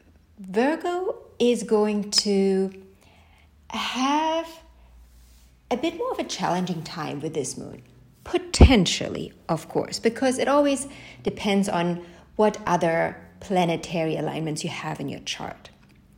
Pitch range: 160-230 Hz